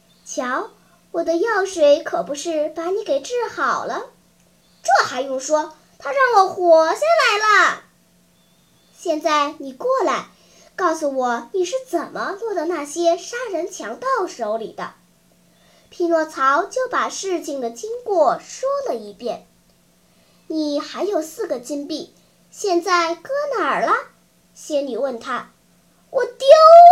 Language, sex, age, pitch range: Chinese, male, 10-29, 280-380 Hz